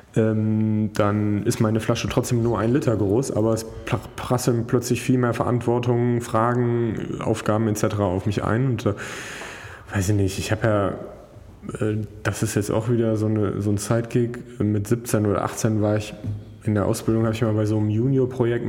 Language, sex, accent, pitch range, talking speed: German, male, German, 105-120 Hz, 180 wpm